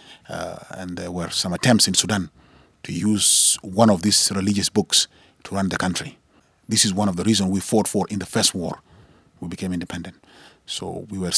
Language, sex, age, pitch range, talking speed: English, male, 30-49, 90-105 Hz, 200 wpm